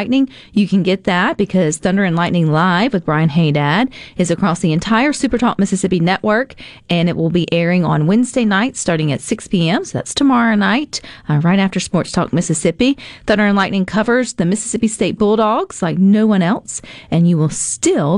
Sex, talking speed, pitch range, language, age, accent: female, 190 wpm, 155-210 Hz, English, 40-59, American